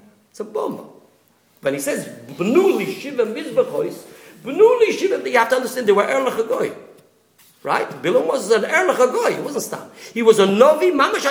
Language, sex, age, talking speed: English, male, 50-69, 140 wpm